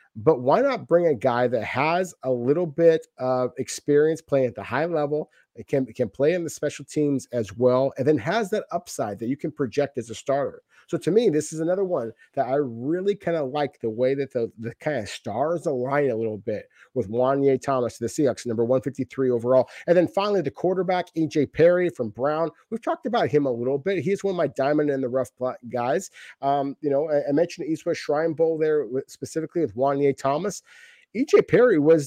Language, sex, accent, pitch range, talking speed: English, male, American, 130-170 Hz, 225 wpm